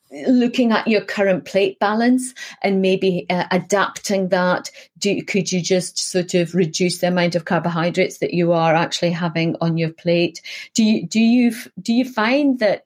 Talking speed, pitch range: 175 wpm, 170-205 Hz